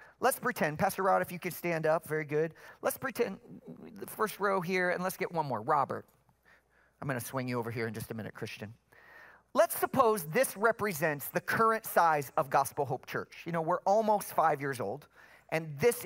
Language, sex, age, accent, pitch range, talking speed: English, male, 40-59, American, 165-230 Hz, 200 wpm